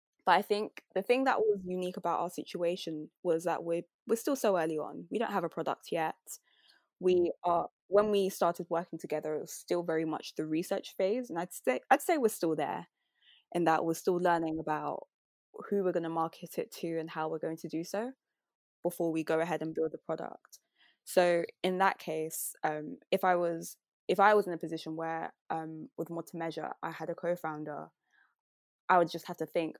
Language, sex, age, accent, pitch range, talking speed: English, female, 20-39, British, 160-185 Hz, 215 wpm